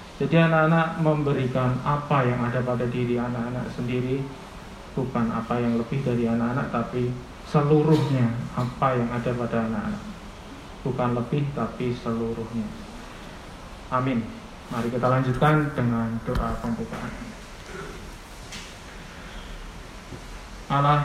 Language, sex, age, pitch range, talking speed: Indonesian, male, 20-39, 125-145 Hz, 100 wpm